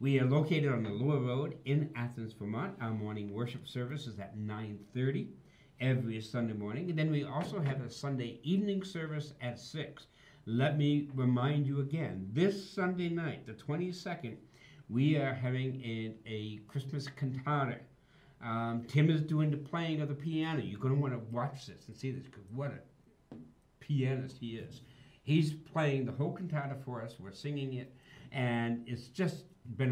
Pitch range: 115-145 Hz